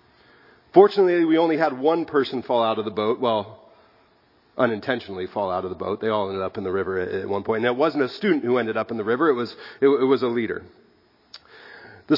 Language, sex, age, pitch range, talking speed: English, male, 40-59, 120-160 Hz, 235 wpm